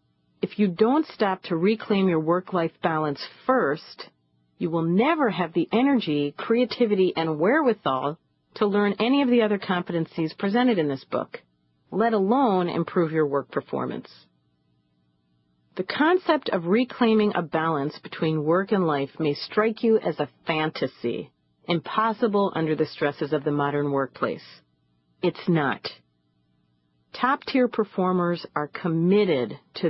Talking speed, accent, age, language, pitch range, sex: 135 wpm, American, 40-59, English, 130-200 Hz, female